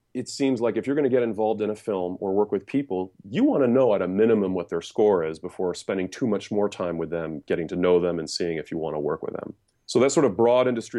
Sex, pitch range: male, 95-115 Hz